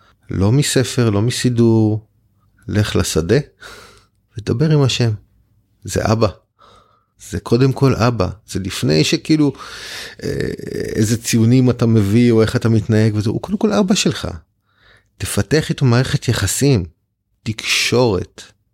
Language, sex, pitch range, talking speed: Hebrew, male, 100-120 Hz, 120 wpm